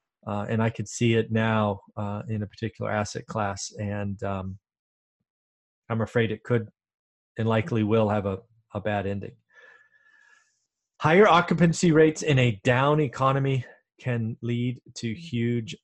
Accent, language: American, English